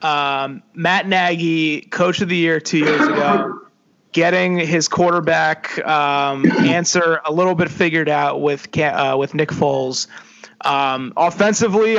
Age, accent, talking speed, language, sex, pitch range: 30-49, American, 135 wpm, English, male, 145-175 Hz